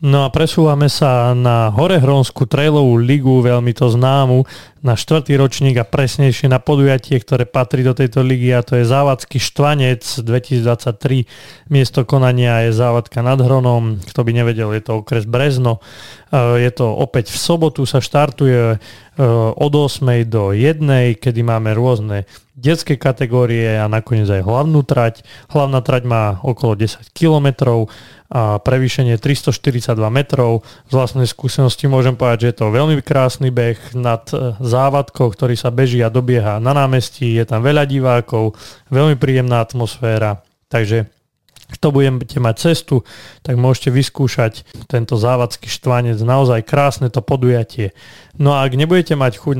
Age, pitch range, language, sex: 30-49, 120-140 Hz, Slovak, male